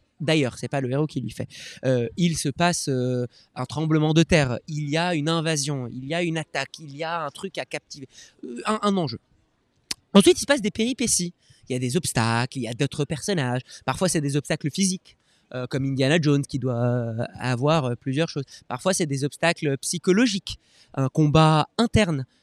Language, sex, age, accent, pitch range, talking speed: French, male, 20-39, French, 135-180 Hz, 205 wpm